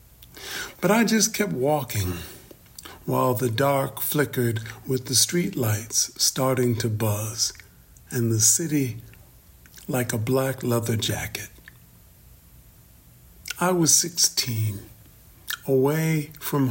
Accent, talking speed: American, 105 wpm